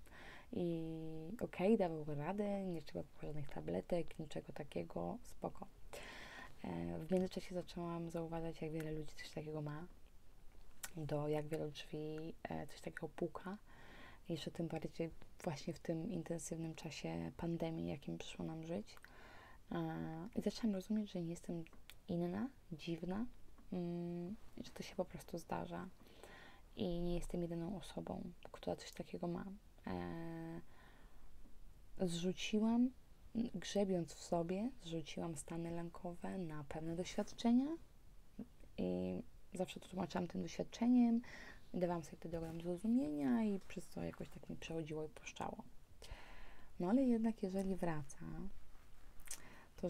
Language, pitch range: Polish, 155-190 Hz